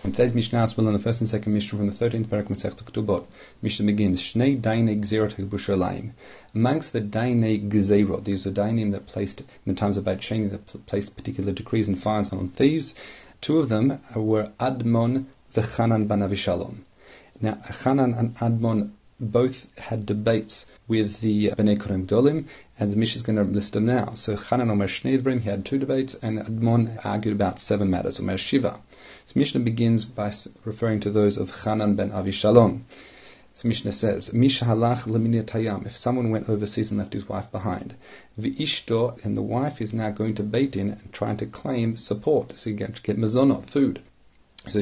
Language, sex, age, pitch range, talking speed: English, male, 30-49, 100-115 Hz, 175 wpm